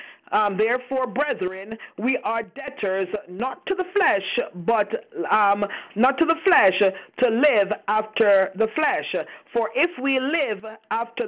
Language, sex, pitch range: English, female, 210-265 Hz